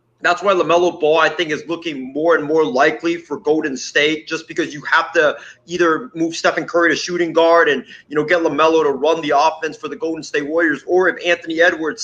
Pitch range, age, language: 155-180 Hz, 30-49, English